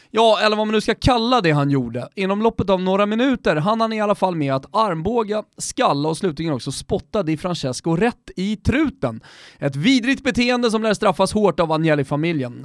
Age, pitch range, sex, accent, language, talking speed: 30-49, 145-220 Hz, male, native, Swedish, 200 wpm